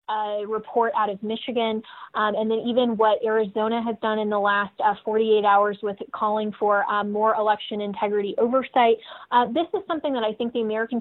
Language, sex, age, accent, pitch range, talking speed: English, female, 20-39, American, 210-235 Hz, 195 wpm